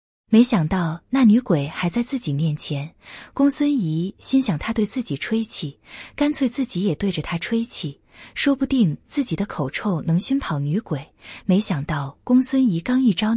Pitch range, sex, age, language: 160-240 Hz, female, 20-39, Chinese